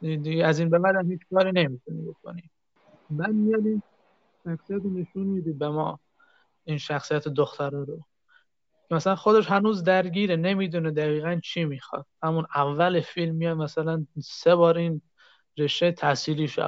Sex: male